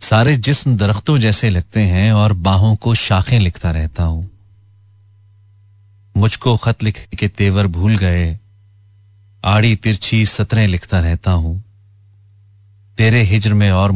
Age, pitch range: 40-59, 95-105 Hz